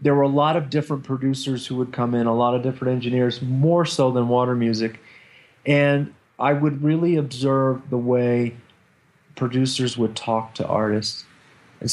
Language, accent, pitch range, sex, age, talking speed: English, American, 125-150 Hz, male, 40-59, 170 wpm